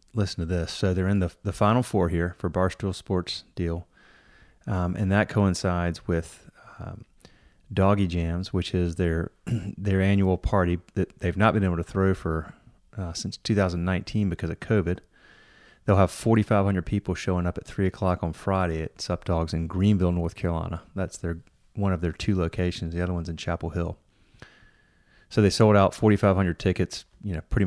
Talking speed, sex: 180 wpm, male